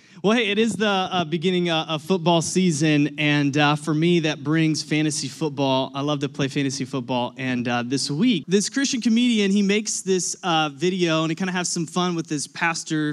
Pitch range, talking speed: 145-180 Hz, 210 wpm